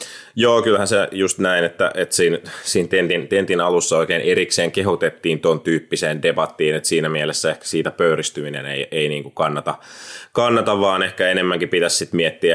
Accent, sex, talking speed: native, male, 165 wpm